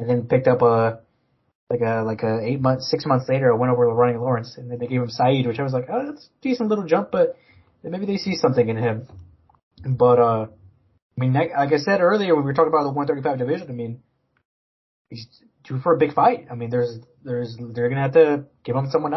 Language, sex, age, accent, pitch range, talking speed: English, male, 20-39, American, 120-165 Hz, 250 wpm